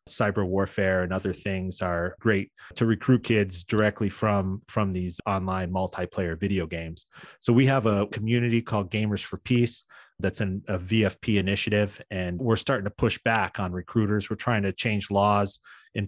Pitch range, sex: 95-110 Hz, male